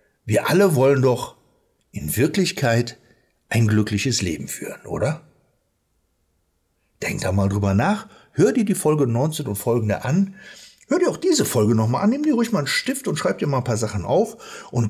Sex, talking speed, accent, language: male, 185 wpm, German, German